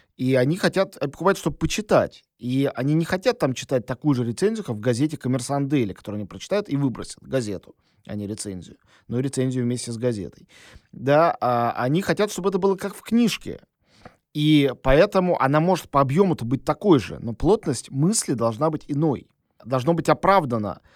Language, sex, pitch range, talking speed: Russian, male, 130-170 Hz, 180 wpm